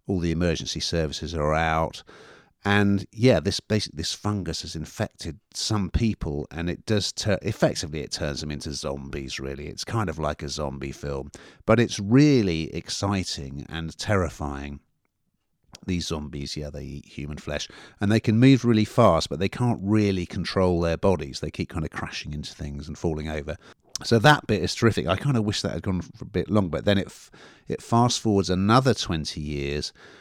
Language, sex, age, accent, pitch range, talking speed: English, male, 50-69, British, 80-100 Hz, 190 wpm